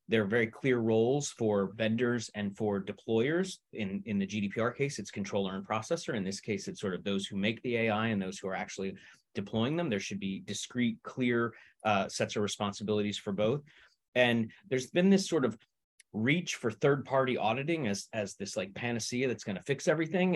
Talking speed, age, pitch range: 200 wpm, 30-49, 105-140 Hz